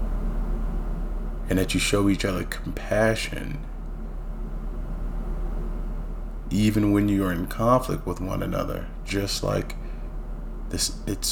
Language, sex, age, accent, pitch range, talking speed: English, male, 30-49, American, 75-100 Hz, 105 wpm